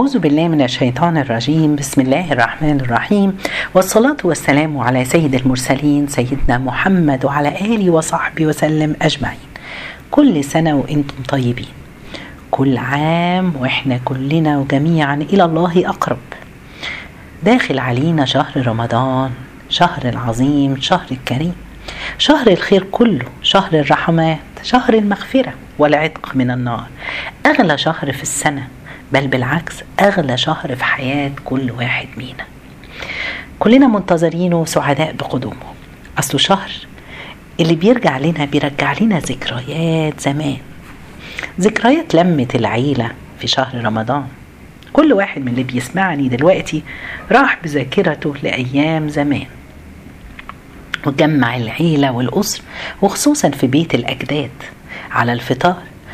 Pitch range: 130-170 Hz